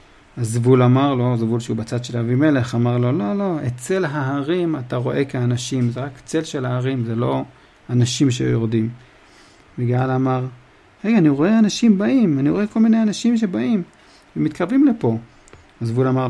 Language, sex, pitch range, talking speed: Hebrew, male, 120-155 Hz, 170 wpm